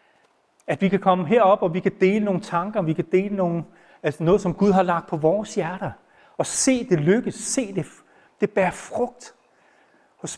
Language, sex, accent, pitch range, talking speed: Danish, male, native, 135-180 Hz, 195 wpm